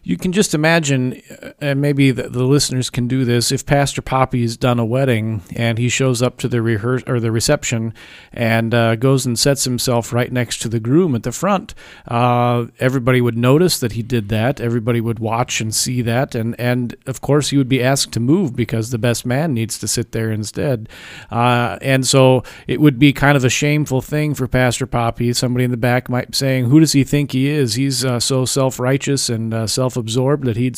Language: English